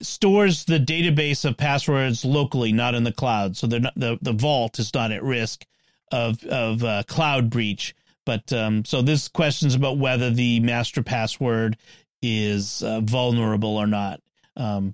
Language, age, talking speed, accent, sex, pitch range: English, 40-59, 170 wpm, American, male, 120-195 Hz